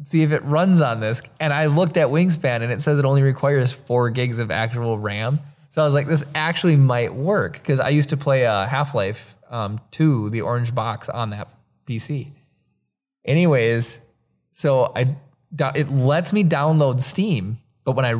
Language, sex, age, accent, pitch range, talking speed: English, male, 20-39, American, 115-145 Hz, 185 wpm